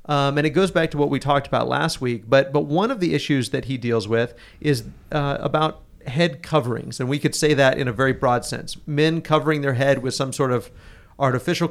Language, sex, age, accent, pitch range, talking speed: English, male, 40-59, American, 125-155 Hz, 235 wpm